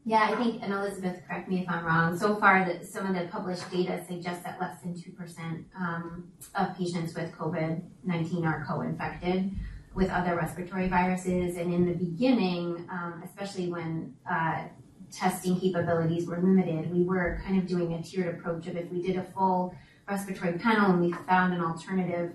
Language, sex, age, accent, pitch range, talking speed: English, female, 30-49, American, 170-185 Hz, 175 wpm